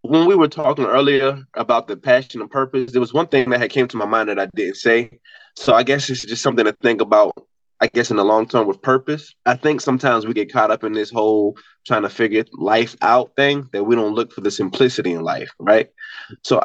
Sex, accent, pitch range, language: male, American, 110-140 Hz, English